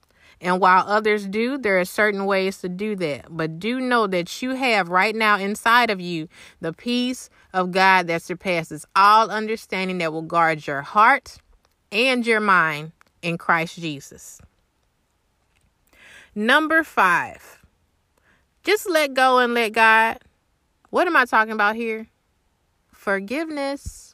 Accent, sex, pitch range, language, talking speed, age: American, female, 155-225 Hz, English, 140 wpm, 30-49